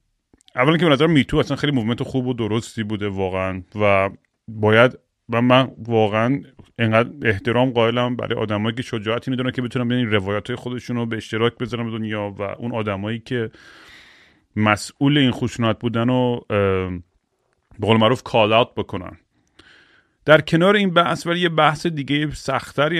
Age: 30-49